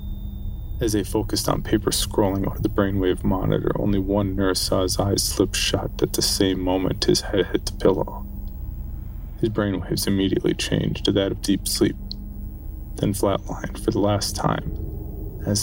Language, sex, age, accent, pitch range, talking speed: English, male, 20-39, American, 90-105 Hz, 165 wpm